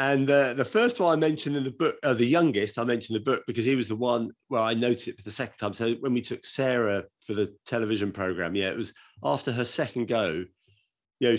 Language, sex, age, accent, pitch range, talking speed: English, male, 30-49, British, 100-125 Hz, 255 wpm